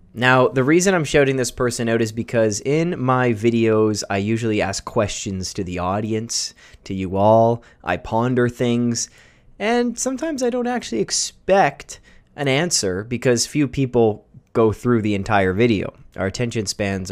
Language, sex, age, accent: English, male, 20-39, American